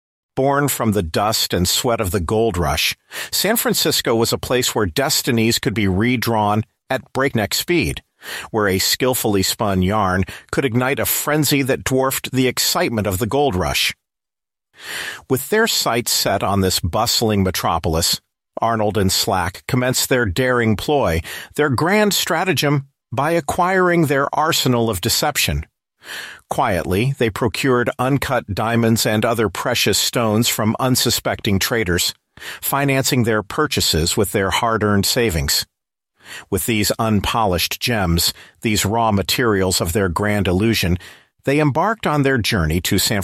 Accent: American